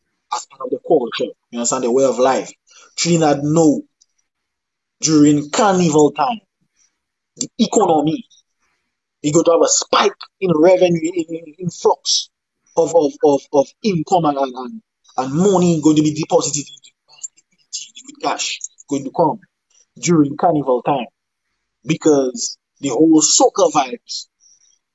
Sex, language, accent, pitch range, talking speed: male, English, Nigerian, 150-190 Hz, 135 wpm